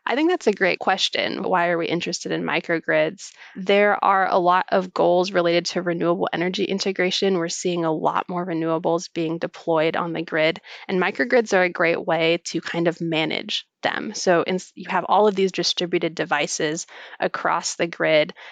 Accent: American